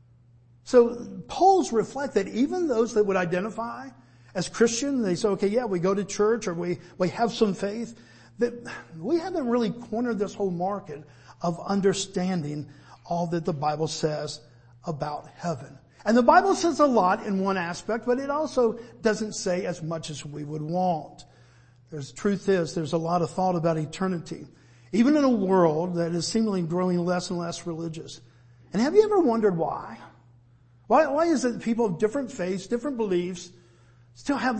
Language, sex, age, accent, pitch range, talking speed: English, male, 50-69, American, 155-230 Hz, 180 wpm